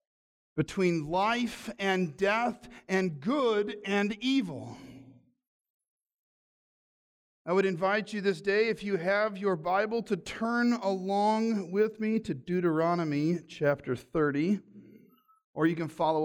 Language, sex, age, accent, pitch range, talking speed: English, male, 50-69, American, 160-245 Hz, 120 wpm